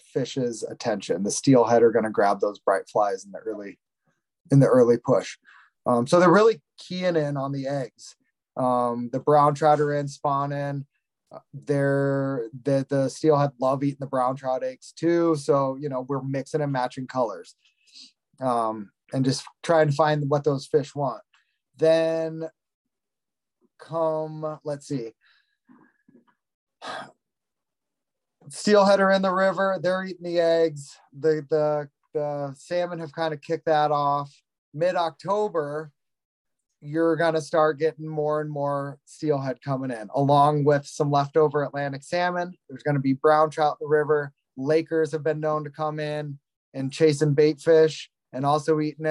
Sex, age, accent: male, 20-39, American